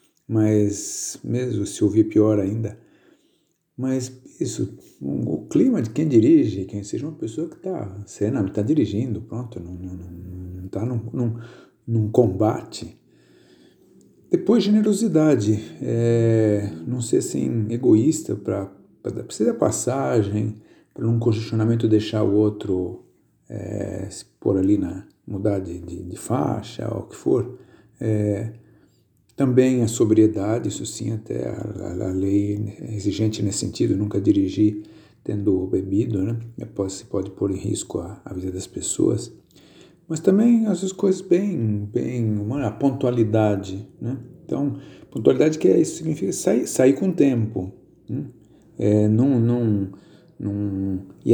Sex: male